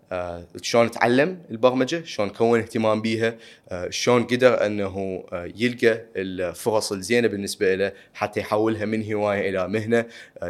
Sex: male